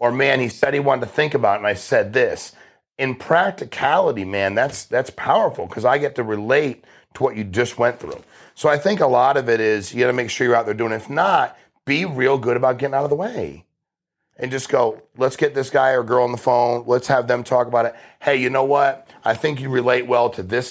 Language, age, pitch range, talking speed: English, 40-59, 115-135 Hz, 255 wpm